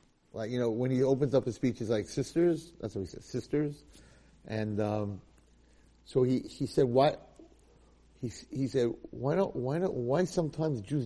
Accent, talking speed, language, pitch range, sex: American, 185 wpm, English, 100-140 Hz, male